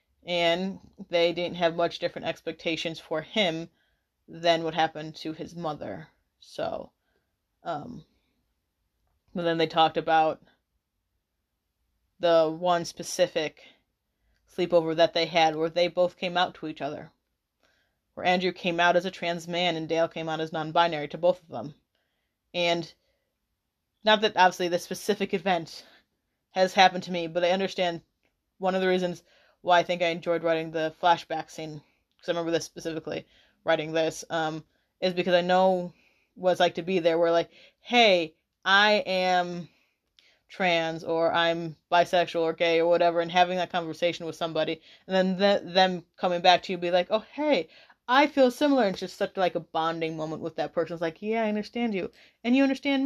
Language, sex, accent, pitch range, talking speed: English, female, American, 160-185 Hz, 170 wpm